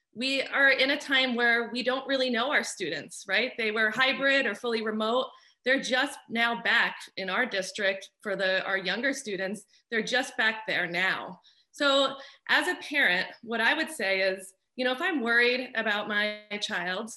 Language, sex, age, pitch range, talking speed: English, female, 30-49, 205-265 Hz, 185 wpm